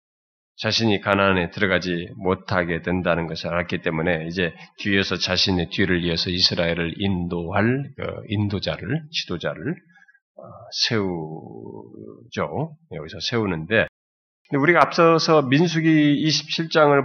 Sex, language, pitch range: male, Korean, 95-150 Hz